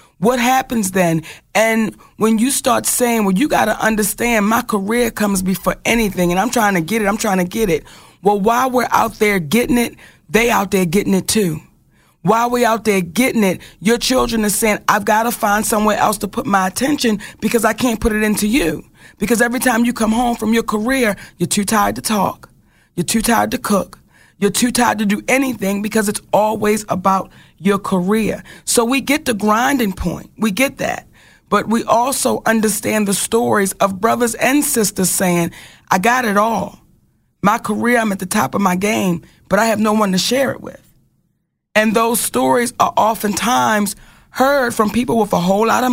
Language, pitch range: English, 200-235 Hz